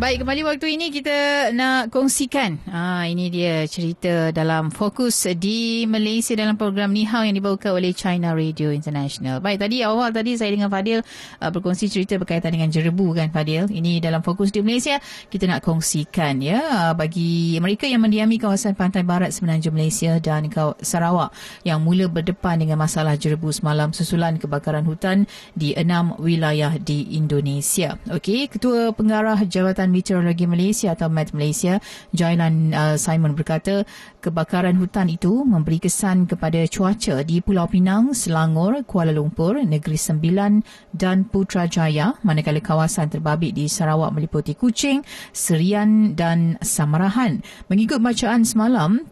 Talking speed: 140 wpm